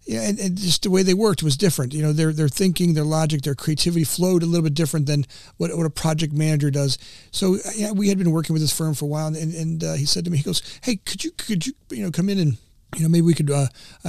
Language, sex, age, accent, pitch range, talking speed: English, male, 40-59, American, 150-175 Hz, 290 wpm